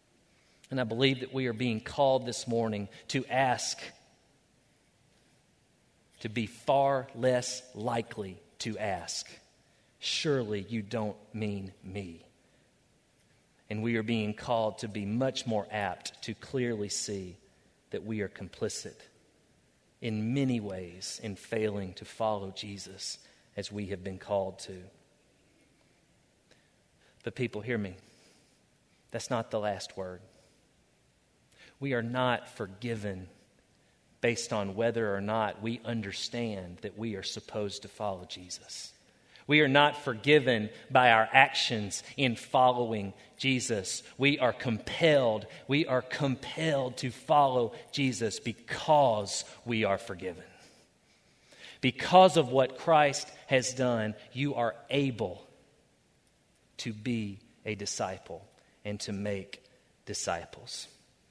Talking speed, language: 120 wpm, English